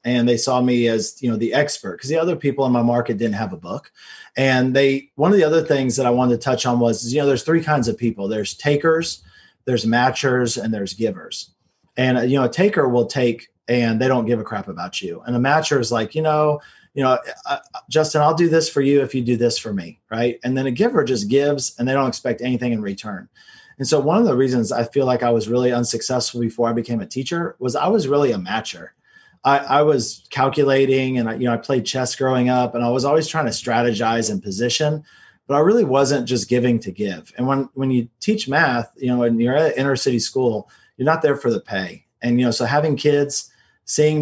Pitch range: 120-150 Hz